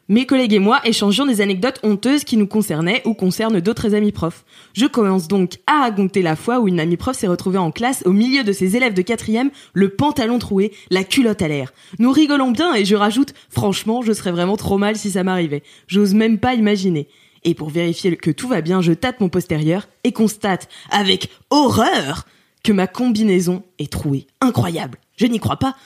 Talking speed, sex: 210 wpm, female